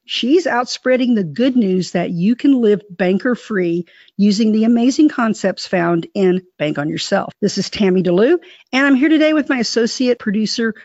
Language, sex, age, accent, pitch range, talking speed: English, female, 50-69, American, 190-255 Hz, 185 wpm